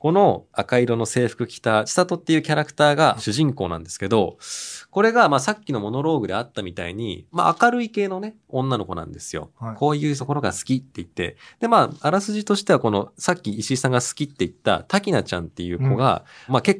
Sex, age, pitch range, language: male, 20-39, 105-160 Hz, Japanese